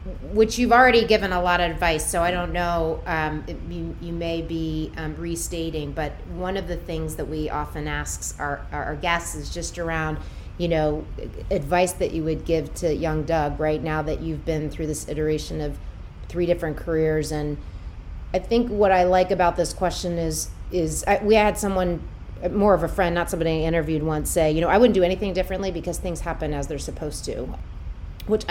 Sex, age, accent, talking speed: female, 30-49, American, 200 wpm